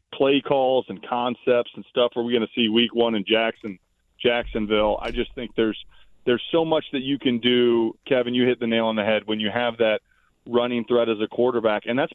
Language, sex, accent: English, male, American